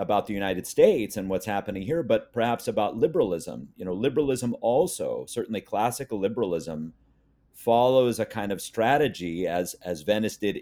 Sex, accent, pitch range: male, American, 95-125 Hz